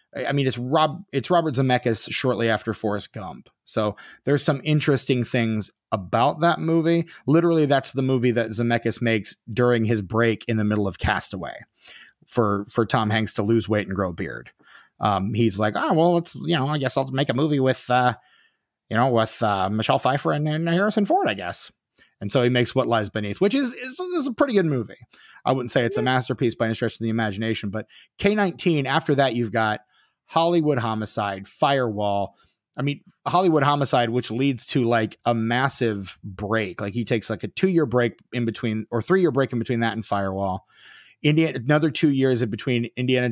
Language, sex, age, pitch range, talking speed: English, male, 30-49, 110-140 Hz, 200 wpm